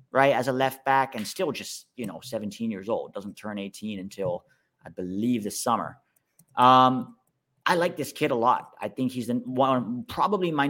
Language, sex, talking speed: English, male, 195 wpm